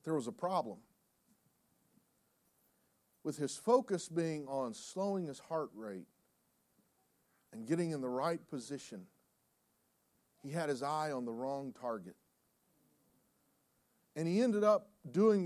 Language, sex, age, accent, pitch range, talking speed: English, male, 40-59, American, 130-180 Hz, 125 wpm